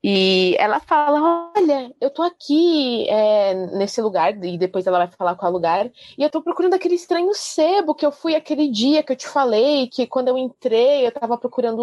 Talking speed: 210 wpm